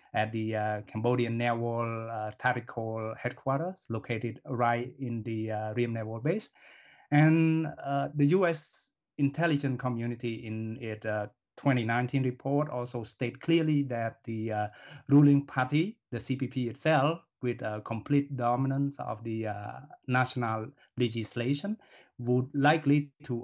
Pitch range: 115-135 Hz